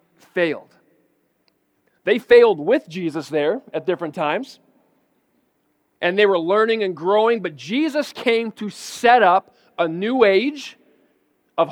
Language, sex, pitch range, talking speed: English, male, 175-220 Hz, 130 wpm